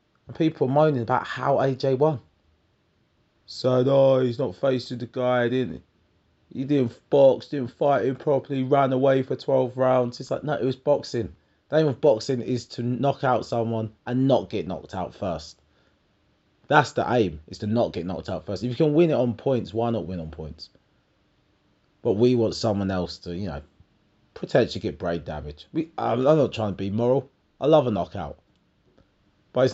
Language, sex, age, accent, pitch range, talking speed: English, male, 30-49, British, 85-130 Hz, 195 wpm